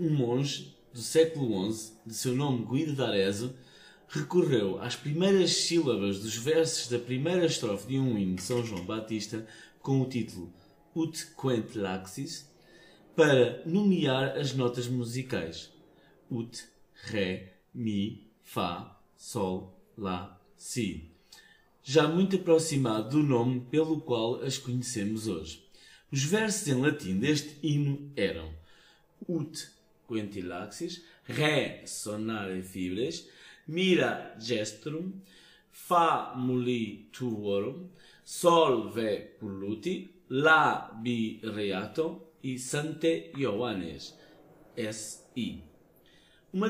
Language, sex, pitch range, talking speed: Portuguese, male, 110-160 Hz, 105 wpm